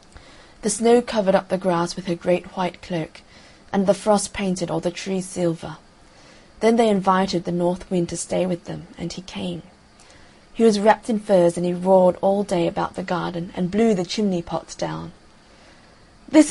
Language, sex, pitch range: Korean, female, 175-205 Hz